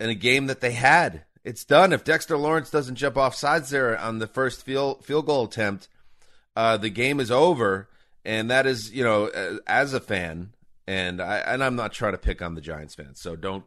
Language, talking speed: English, 225 wpm